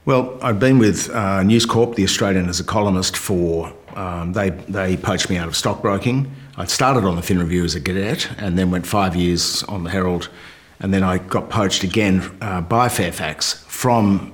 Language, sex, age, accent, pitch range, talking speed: English, male, 50-69, Australian, 90-105 Hz, 200 wpm